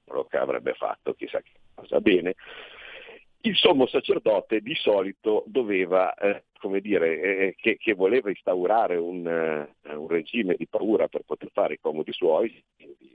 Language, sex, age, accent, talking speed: Italian, male, 50-69, native, 155 wpm